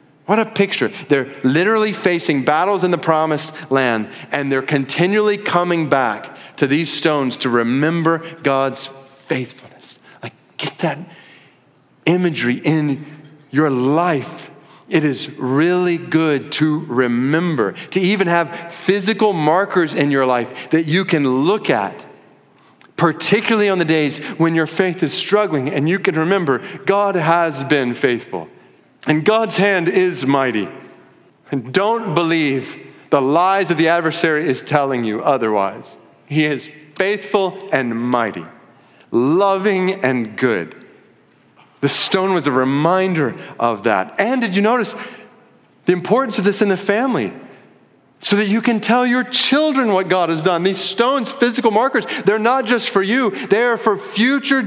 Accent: American